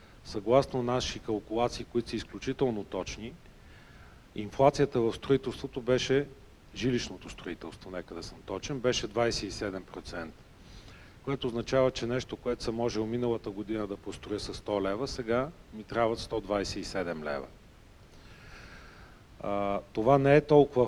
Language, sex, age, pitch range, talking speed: Bulgarian, male, 40-59, 110-130 Hz, 120 wpm